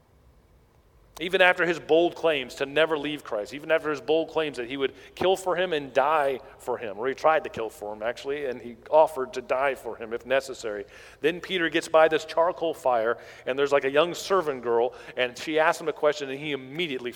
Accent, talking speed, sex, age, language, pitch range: American, 225 wpm, male, 40-59, English, 115-155 Hz